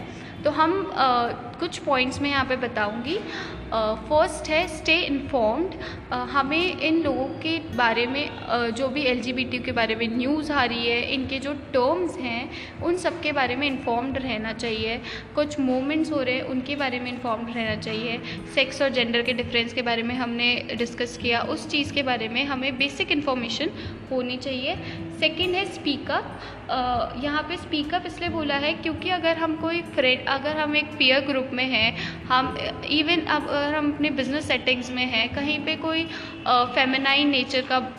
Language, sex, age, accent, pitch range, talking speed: Hindi, female, 20-39, native, 245-305 Hz, 170 wpm